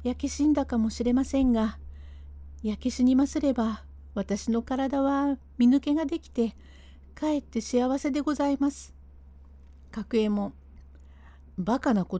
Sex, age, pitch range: female, 50-69, 170-260 Hz